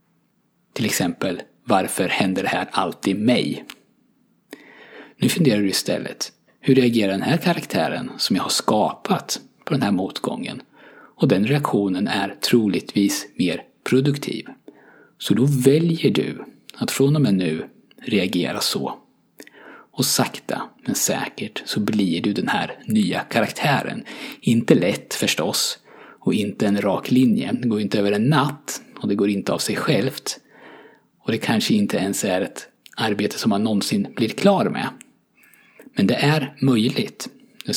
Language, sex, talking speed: Swedish, male, 150 wpm